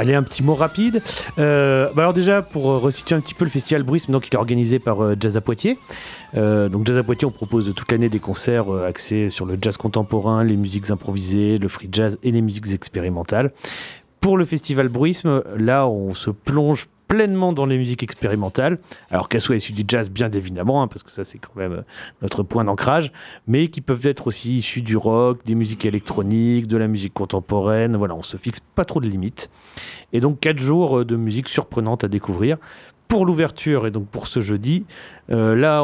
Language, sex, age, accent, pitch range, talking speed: French, male, 30-49, French, 105-140 Hz, 210 wpm